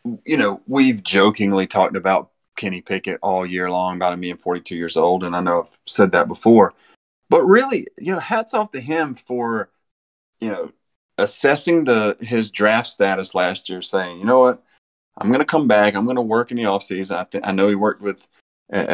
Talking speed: 205 wpm